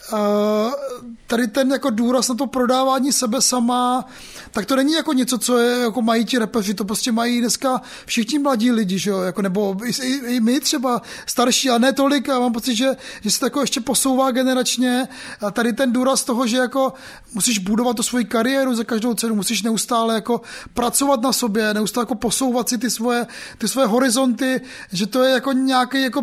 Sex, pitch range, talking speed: male, 230-260 Hz, 200 wpm